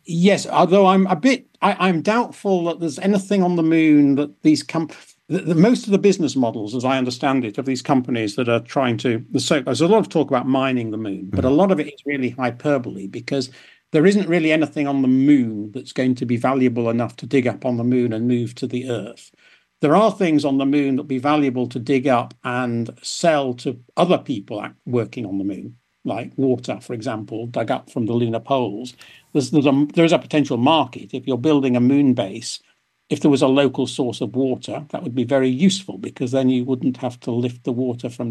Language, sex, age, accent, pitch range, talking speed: English, male, 50-69, British, 125-155 Hz, 225 wpm